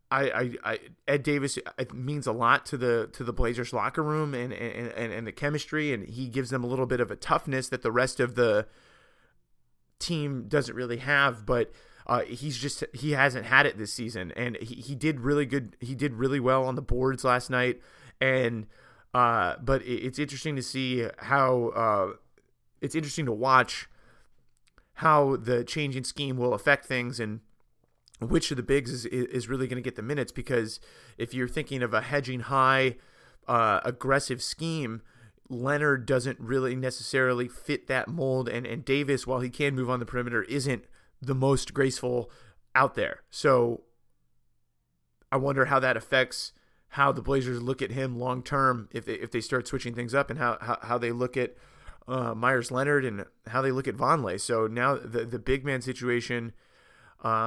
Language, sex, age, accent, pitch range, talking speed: English, male, 30-49, American, 120-135 Hz, 190 wpm